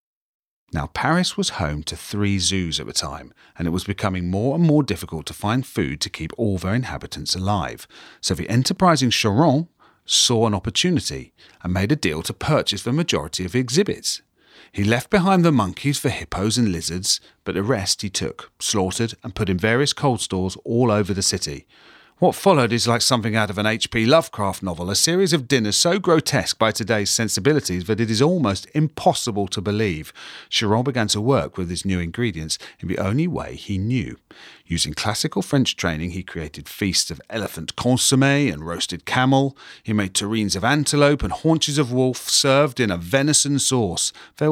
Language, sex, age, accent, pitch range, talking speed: English, male, 40-59, British, 95-140 Hz, 185 wpm